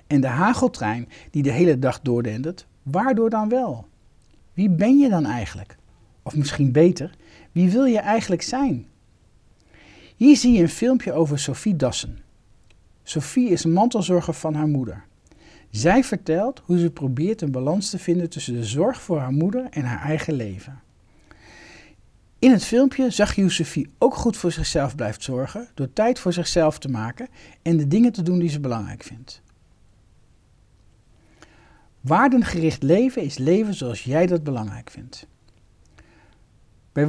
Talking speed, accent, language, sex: 155 wpm, Dutch, Dutch, male